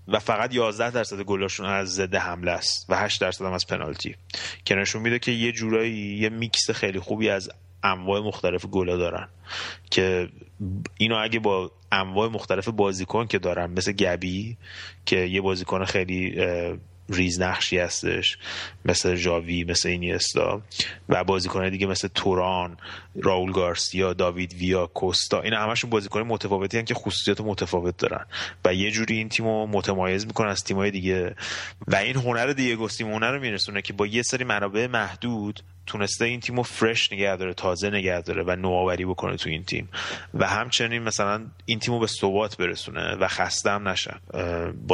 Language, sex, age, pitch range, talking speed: Persian, male, 30-49, 90-110 Hz, 165 wpm